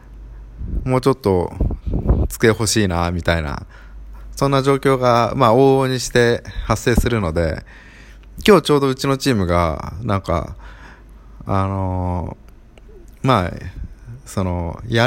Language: Japanese